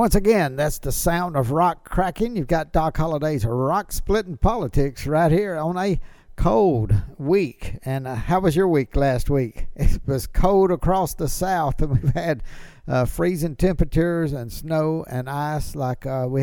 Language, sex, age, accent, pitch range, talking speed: English, male, 60-79, American, 120-160 Hz, 175 wpm